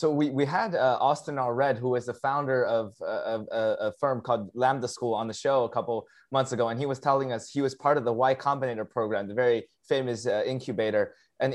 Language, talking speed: English, 245 wpm